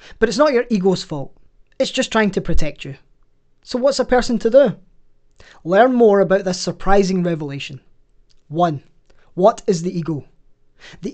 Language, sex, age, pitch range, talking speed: English, male, 20-39, 165-210 Hz, 160 wpm